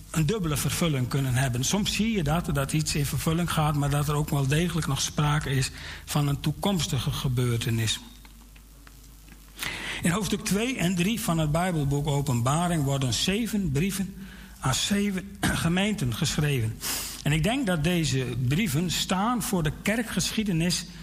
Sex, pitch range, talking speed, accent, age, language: male, 140-185 Hz, 150 wpm, Dutch, 60-79, Dutch